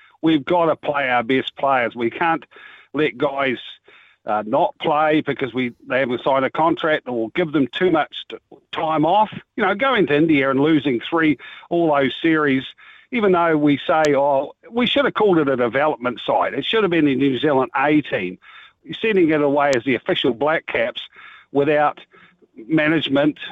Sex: male